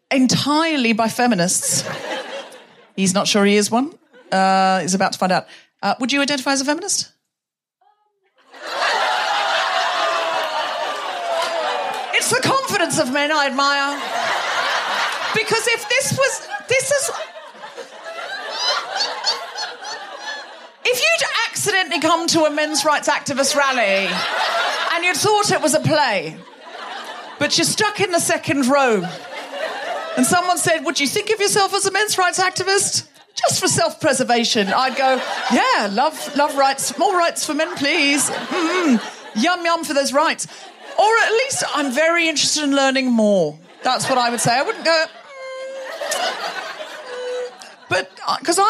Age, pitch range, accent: 40-59, 245-345 Hz, British